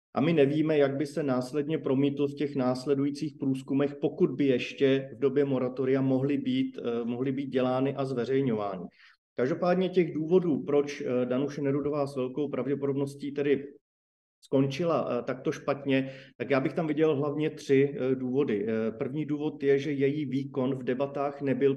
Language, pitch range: Slovak, 130-145 Hz